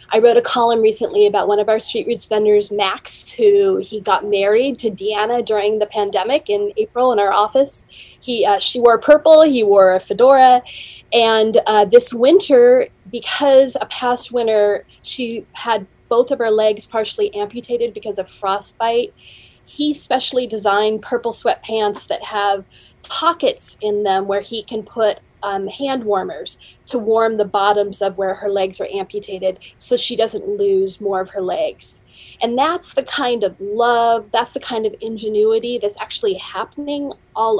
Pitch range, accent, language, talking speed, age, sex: 205-245 Hz, American, English, 170 wpm, 30-49, female